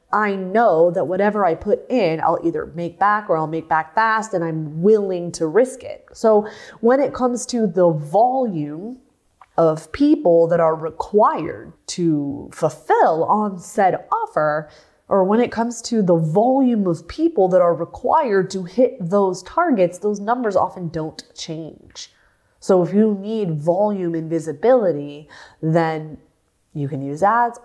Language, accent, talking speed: English, American, 155 wpm